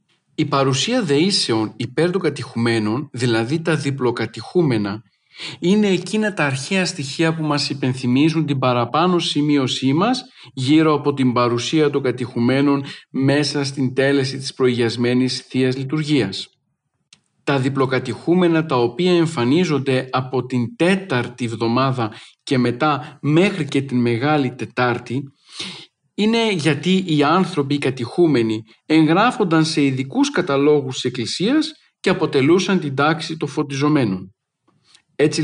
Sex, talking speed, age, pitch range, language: male, 115 wpm, 50-69, 130-165 Hz, Greek